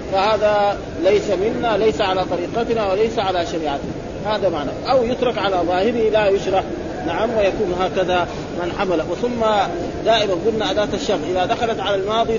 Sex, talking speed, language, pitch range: male, 150 wpm, Arabic, 180-230 Hz